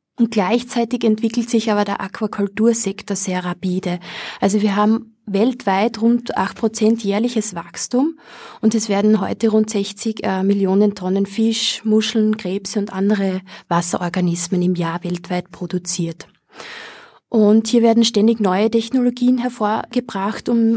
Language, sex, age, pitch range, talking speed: English, female, 20-39, 195-230 Hz, 125 wpm